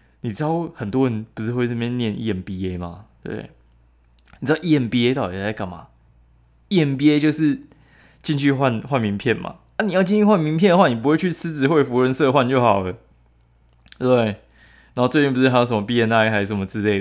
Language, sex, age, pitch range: Chinese, male, 20-39, 95-130 Hz